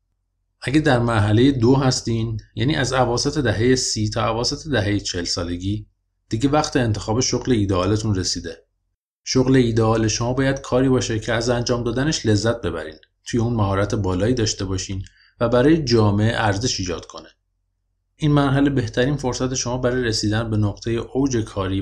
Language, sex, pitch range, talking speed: Persian, male, 95-125 Hz, 150 wpm